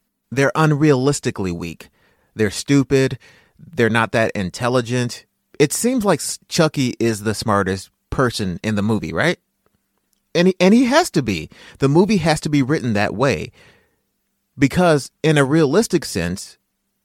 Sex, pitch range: male, 105-165 Hz